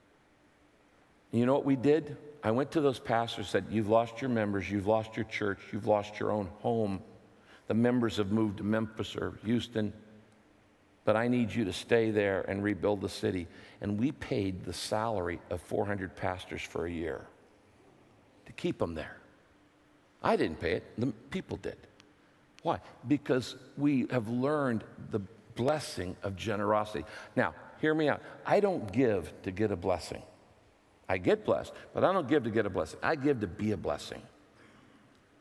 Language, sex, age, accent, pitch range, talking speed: English, male, 50-69, American, 105-140 Hz, 175 wpm